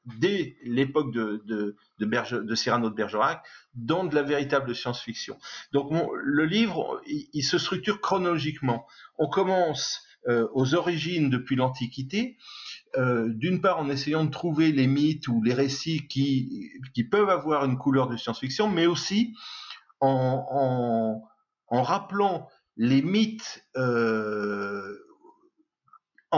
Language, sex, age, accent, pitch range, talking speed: French, male, 50-69, French, 125-170 Hz, 135 wpm